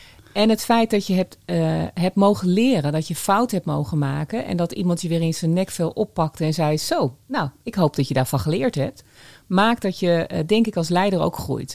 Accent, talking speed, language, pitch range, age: Dutch, 240 wpm, Dutch, 150-190 Hz, 40-59